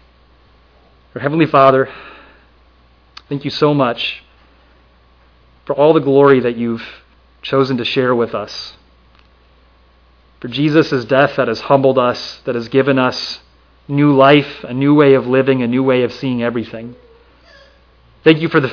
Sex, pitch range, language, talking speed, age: male, 120-145 Hz, English, 145 wpm, 30-49